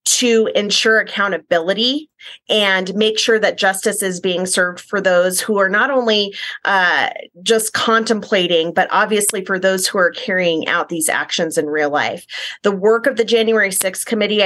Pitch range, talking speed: 180-220 Hz, 165 wpm